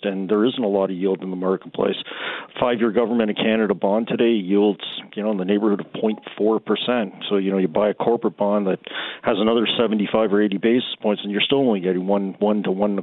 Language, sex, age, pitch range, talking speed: English, male, 40-59, 95-110 Hz, 225 wpm